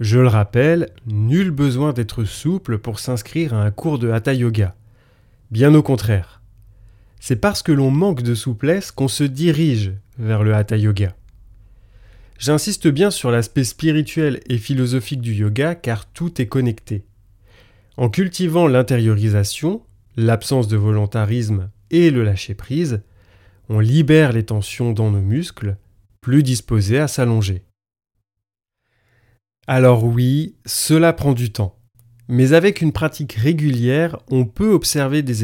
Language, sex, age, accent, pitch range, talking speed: French, male, 30-49, French, 105-150 Hz, 135 wpm